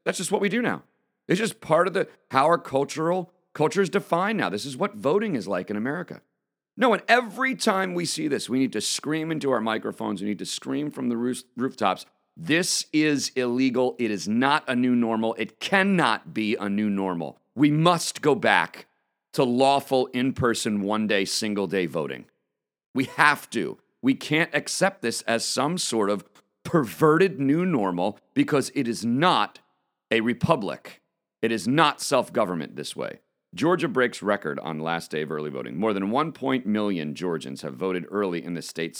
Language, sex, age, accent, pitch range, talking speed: English, male, 40-59, American, 100-170 Hz, 180 wpm